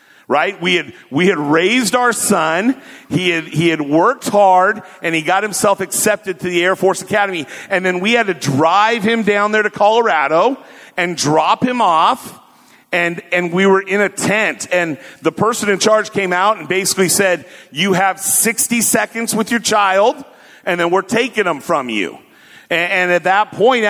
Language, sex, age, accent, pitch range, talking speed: English, male, 50-69, American, 170-210 Hz, 190 wpm